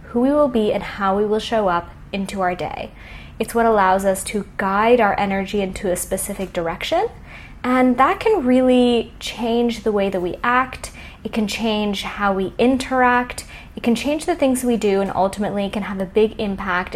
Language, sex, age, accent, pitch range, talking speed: English, female, 10-29, American, 195-240 Hz, 195 wpm